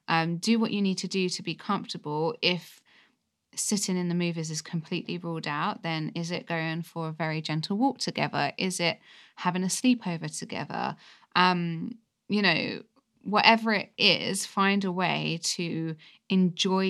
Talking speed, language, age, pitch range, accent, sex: 160 wpm, English, 20-39, 165-200 Hz, British, female